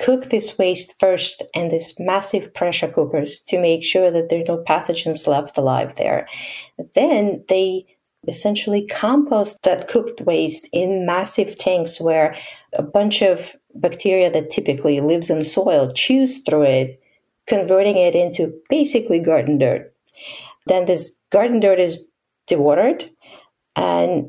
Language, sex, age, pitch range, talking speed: English, female, 50-69, 170-220 Hz, 140 wpm